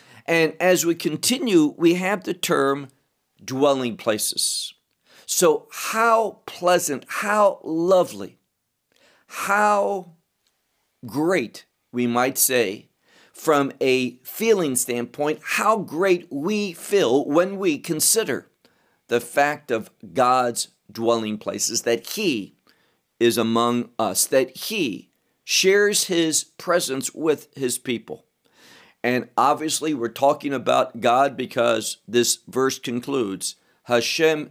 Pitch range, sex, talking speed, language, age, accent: 125-185 Hz, male, 105 wpm, English, 50-69, American